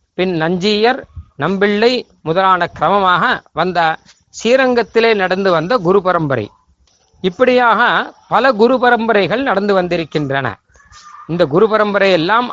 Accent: native